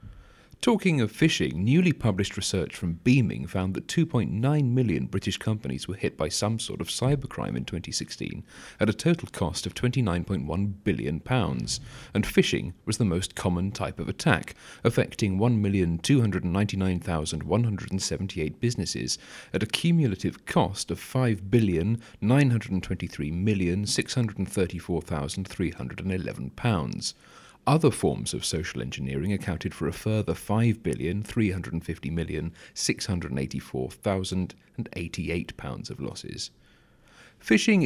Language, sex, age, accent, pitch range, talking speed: English, male, 40-59, British, 85-115 Hz, 95 wpm